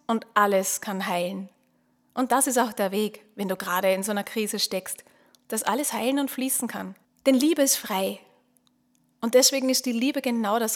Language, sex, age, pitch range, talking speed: German, female, 30-49, 210-265 Hz, 195 wpm